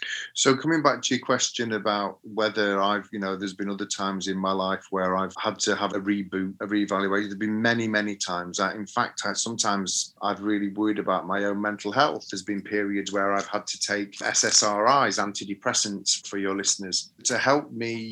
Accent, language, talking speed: British, English, 200 wpm